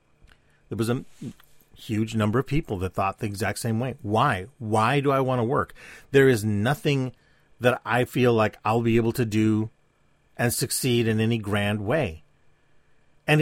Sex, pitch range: male, 110-140 Hz